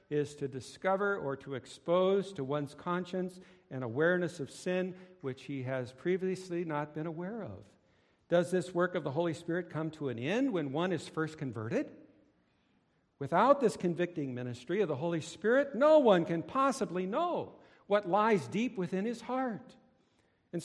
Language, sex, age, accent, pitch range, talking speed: English, male, 60-79, American, 145-195 Hz, 165 wpm